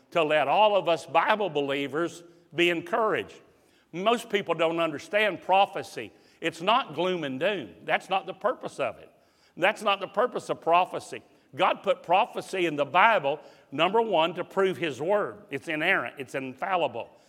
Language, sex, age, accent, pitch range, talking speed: English, male, 50-69, American, 160-205 Hz, 165 wpm